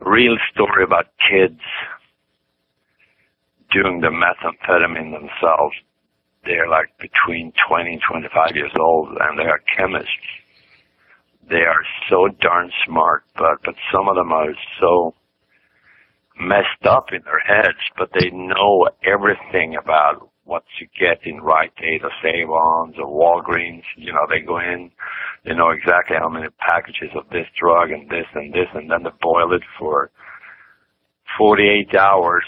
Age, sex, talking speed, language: 60-79, male, 145 wpm, English